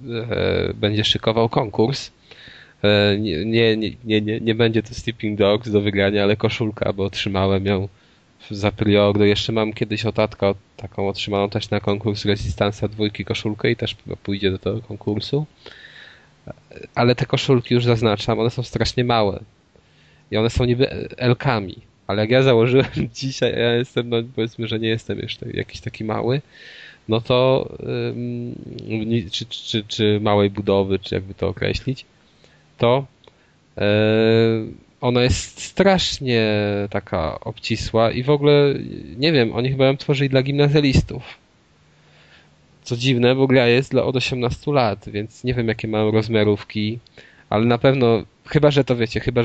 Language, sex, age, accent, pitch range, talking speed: Polish, male, 20-39, native, 105-120 Hz, 145 wpm